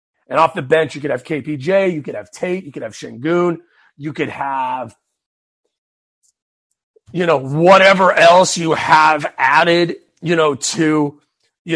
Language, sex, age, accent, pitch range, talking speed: English, male, 40-59, American, 150-185 Hz, 155 wpm